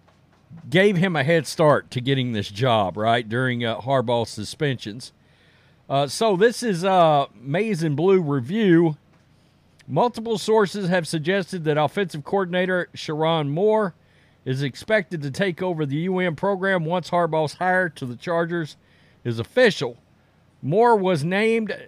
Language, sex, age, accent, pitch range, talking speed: English, male, 50-69, American, 135-185 Hz, 145 wpm